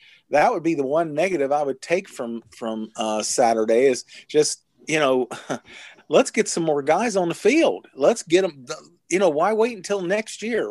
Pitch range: 130-185 Hz